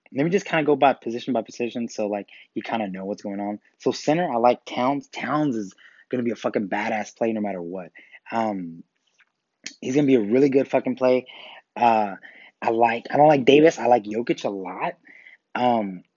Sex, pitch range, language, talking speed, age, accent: male, 105-135 Hz, English, 225 wpm, 20-39, American